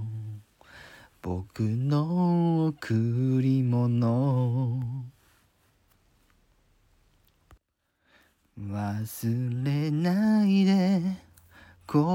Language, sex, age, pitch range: Japanese, male, 40-59, 115-190 Hz